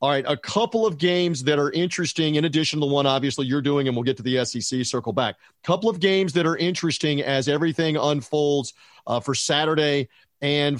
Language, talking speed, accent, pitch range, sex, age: English, 205 wpm, American, 135-165 Hz, male, 40-59